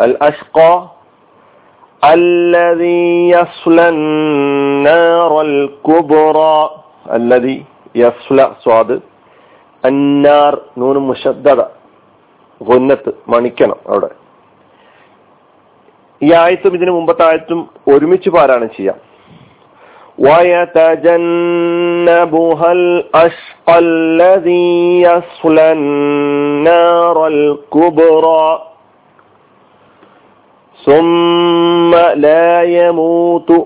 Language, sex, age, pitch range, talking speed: Malayalam, male, 40-59, 125-170 Hz, 60 wpm